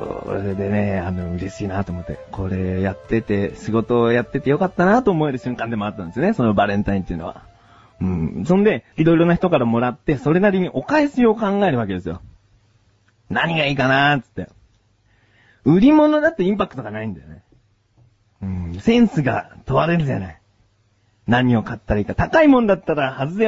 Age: 40-59